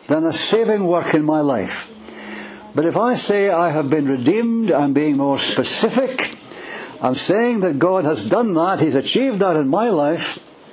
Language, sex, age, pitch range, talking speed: English, male, 60-79, 150-205 Hz, 180 wpm